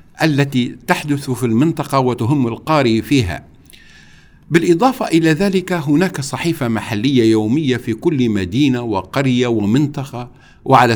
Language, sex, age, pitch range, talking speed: Arabic, male, 60-79, 115-155 Hz, 110 wpm